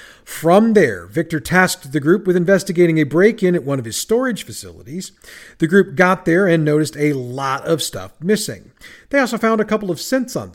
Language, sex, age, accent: English, male, 40-59, American